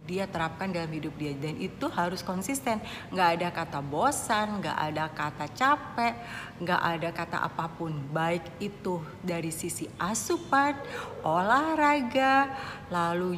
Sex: female